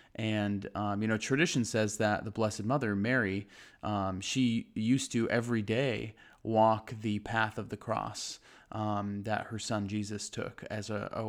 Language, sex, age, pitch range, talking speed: English, male, 20-39, 105-125 Hz, 170 wpm